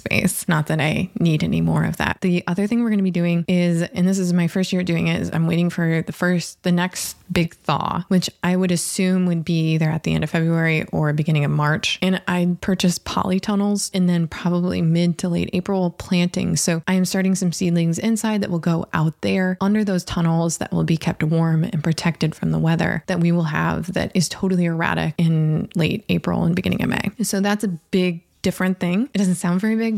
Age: 20-39